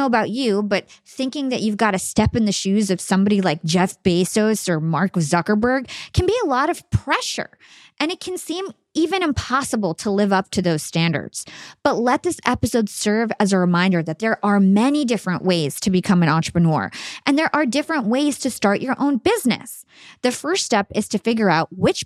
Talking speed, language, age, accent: 200 wpm, English, 20-39, American